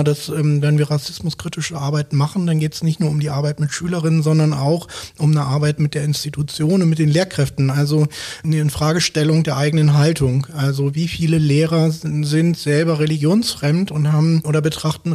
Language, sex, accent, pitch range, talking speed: German, male, German, 150-165 Hz, 185 wpm